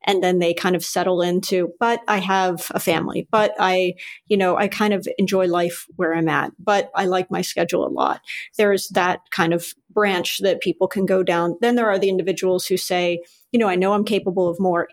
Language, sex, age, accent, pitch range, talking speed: English, female, 40-59, American, 180-205 Hz, 225 wpm